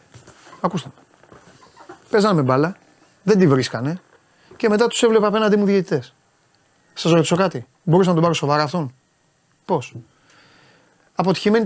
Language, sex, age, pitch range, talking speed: Greek, male, 30-49, 155-210 Hz, 125 wpm